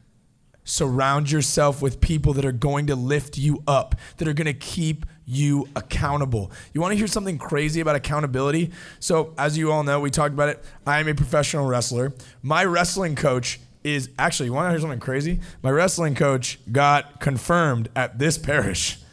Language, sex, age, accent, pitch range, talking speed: English, male, 20-39, American, 140-175 Hz, 185 wpm